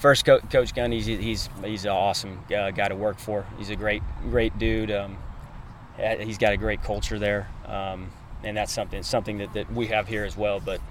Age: 30-49